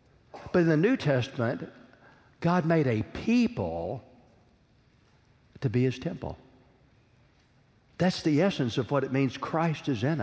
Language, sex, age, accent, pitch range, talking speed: English, male, 60-79, American, 120-155 Hz, 135 wpm